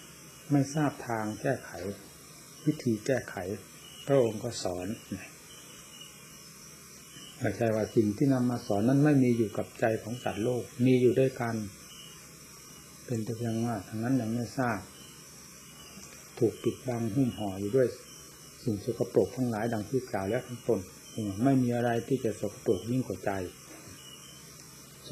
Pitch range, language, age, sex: 115-135 Hz, Thai, 60-79, male